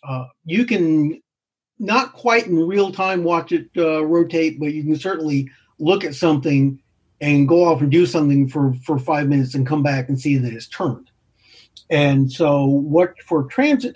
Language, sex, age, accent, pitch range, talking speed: English, male, 50-69, American, 125-155 Hz, 180 wpm